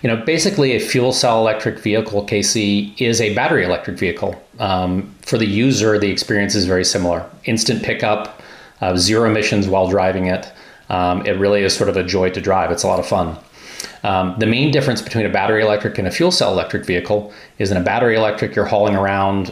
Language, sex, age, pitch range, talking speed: English, male, 30-49, 95-110 Hz, 210 wpm